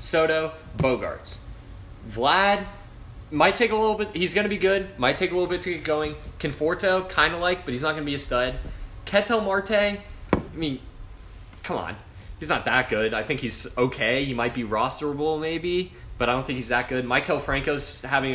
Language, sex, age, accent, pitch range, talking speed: English, male, 10-29, American, 110-145 Hz, 205 wpm